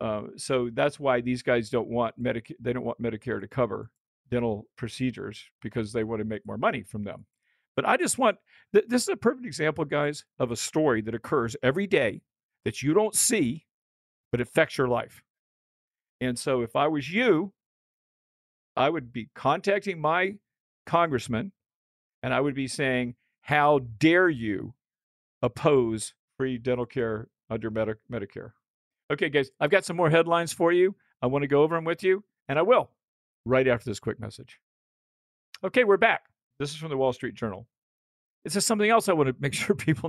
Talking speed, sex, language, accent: 185 wpm, male, English, American